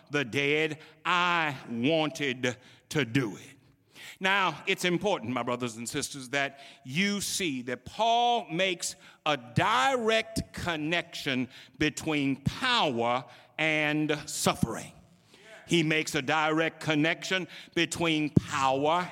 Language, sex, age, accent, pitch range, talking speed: English, male, 60-79, American, 145-200 Hz, 105 wpm